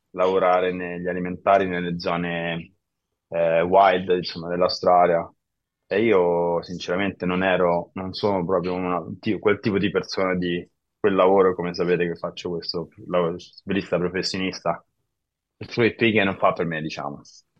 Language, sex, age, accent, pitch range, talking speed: Italian, male, 20-39, native, 85-105 Hz, 145 wpm